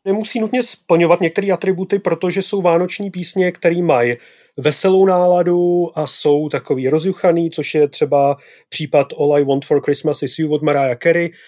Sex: male